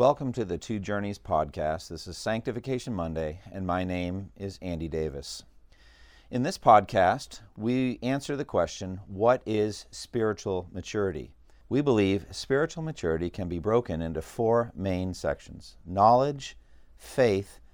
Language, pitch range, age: English, 85-120 Hz, 50-69